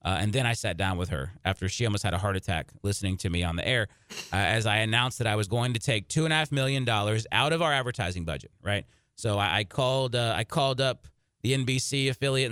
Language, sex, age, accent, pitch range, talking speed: English, male, 30-49, American, 110-130 Hz, 260 wpm